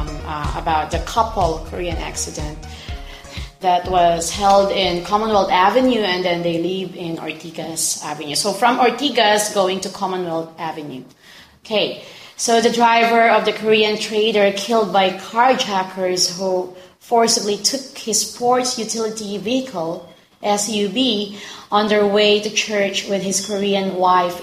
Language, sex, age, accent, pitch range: Korean, female, 20-39, Filipino, 180-220 Hz